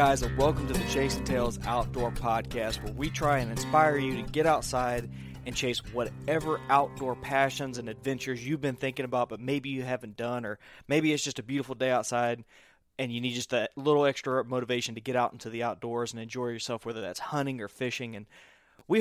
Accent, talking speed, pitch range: American, 210 wpm, 120-140 Hz